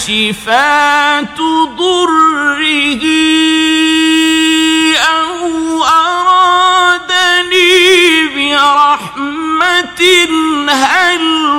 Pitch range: 265-335 Hz